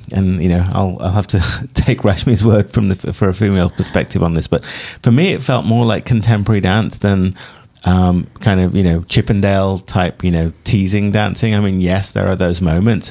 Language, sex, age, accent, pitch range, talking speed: English, male, 30-49, British, 95-120 Hz, 210 wpm